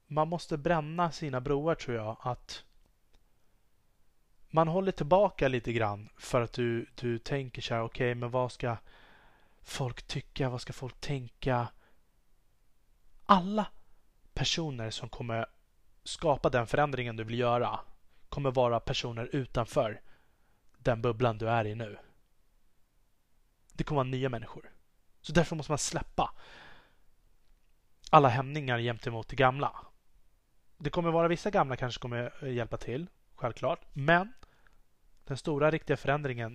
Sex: male